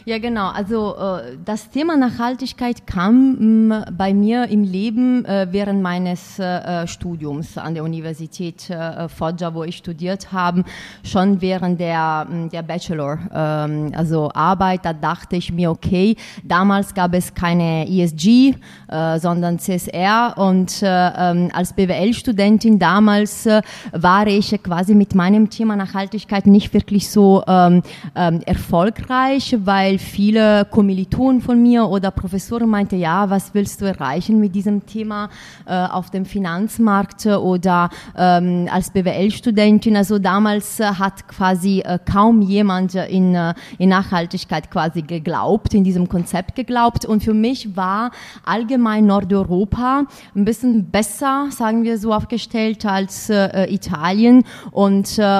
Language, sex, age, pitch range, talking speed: German, female, 30-49, 180-215 Hz, 115 wpm